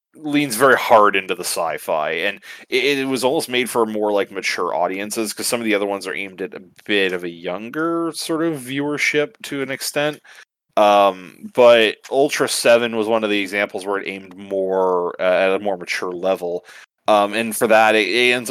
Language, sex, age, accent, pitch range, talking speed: English, male, 30-49, American, 95-125 Hz, 205 wpm